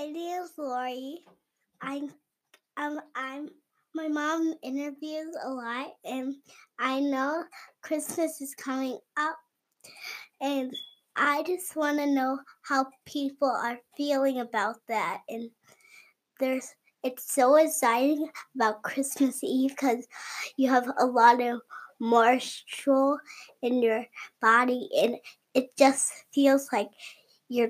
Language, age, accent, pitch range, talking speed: English, 10-29, American, 240-295 Hz, 115 wpm